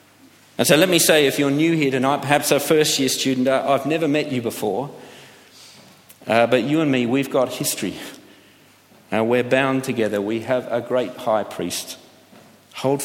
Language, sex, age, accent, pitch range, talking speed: English, male, 50-69, Australian, 110-140 Hz, 175 wpm